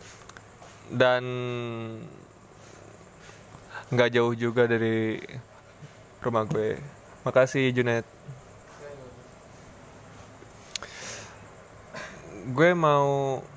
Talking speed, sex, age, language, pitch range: 50 wpm, male, 20-39, Indonesian, 115-140 Hz